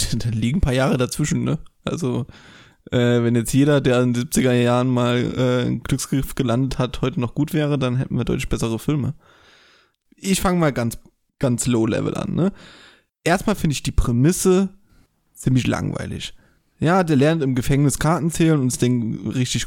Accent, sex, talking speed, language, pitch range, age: German, male, 180 wpm, German, 120-150 Hz, 20-39